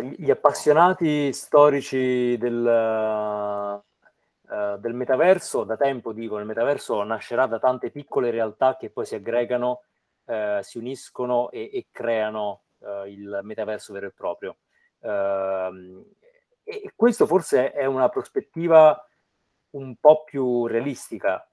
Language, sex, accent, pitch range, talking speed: Italian, male, native, 105-160 Hz, 110 wpm